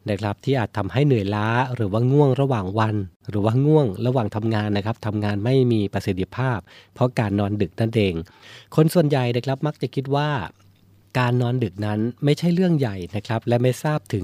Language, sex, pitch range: Thai, male, 105-130 Hz